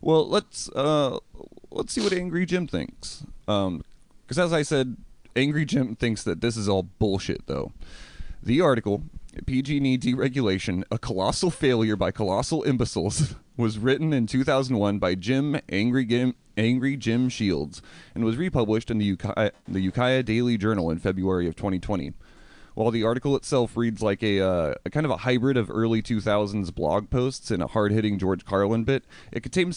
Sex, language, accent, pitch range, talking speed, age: male, English, American, 95-125 Hz, 170 wpm, 30-49